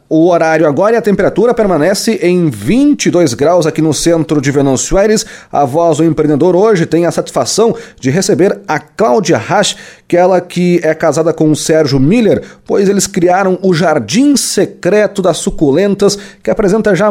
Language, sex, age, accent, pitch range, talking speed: Portuguese, male, 30-49, Brazilian, 155-200 Hz, 175 wpm